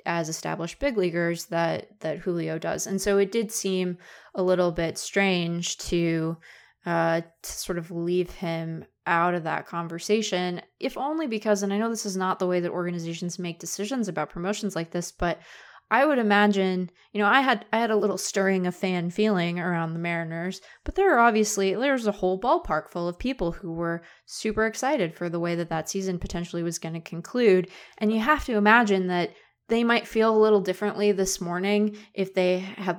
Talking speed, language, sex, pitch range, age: 200 wpm, English, female, 175-210 Hz, 20-39